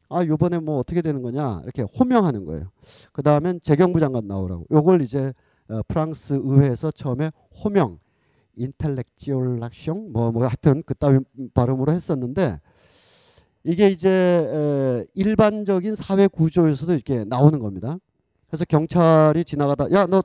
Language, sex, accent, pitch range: Korean, male, native, 125-175 Hz